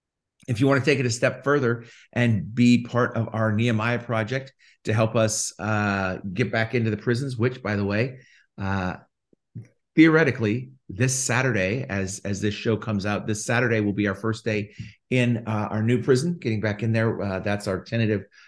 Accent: American